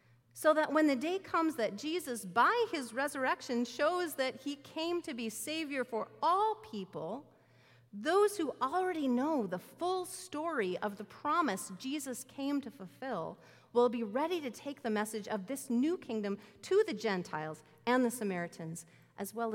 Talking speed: 165 wpm